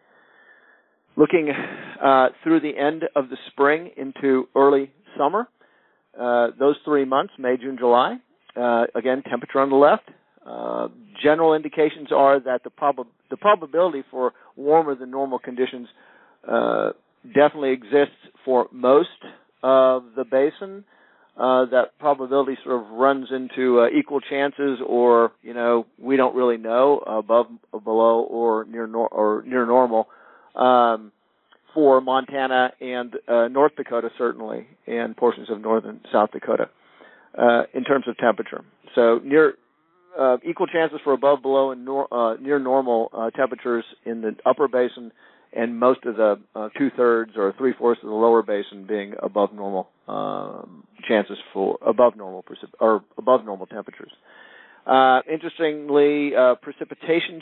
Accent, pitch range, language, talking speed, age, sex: American, 115-140 Hz, English, 145 wpm, 50-69, male